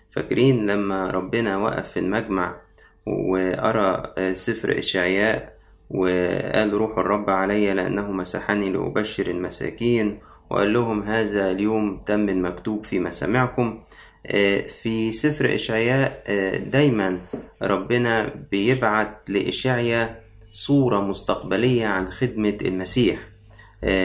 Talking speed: 90 wpm